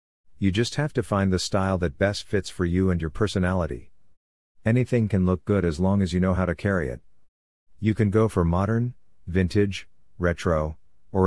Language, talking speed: English, 190 wpm